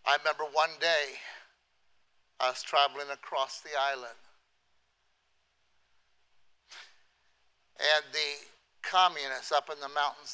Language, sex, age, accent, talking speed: English, male, 60-79, American, 100 wpm